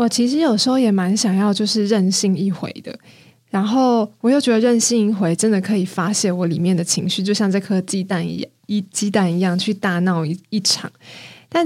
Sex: female